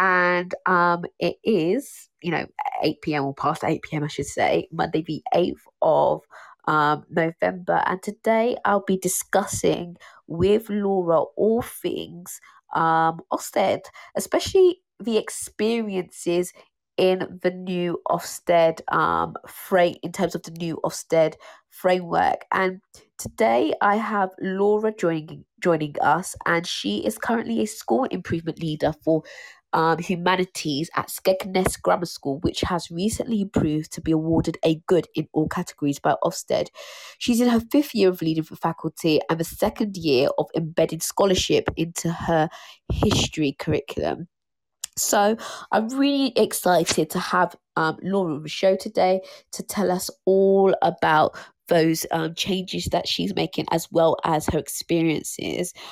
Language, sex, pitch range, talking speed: English, female, 160-195 Hz, 140 wpm